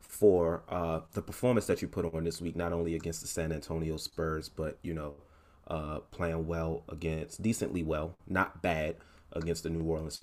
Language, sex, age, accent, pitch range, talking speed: English, male, 30-49, American, 80-100 Hz, 190 wpm